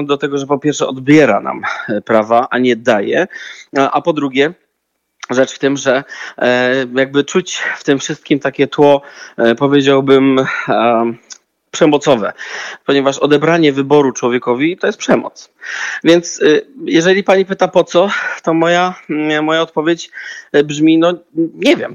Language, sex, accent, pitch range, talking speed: Polish, male, native, 130-160 Hz, 135 wpm